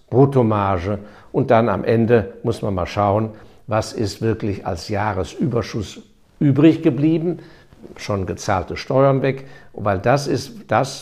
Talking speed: 130 wpm